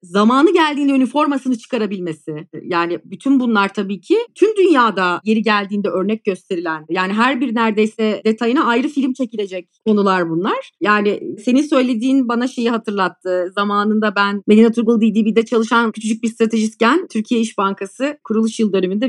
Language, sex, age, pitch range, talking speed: Turkish, female, 30-49, 200-255 Hz, 145 wpm